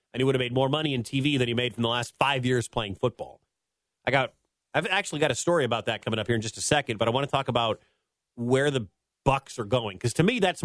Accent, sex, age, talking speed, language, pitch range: American, male, 40-59, 280 wpm, English, 115-145 Hz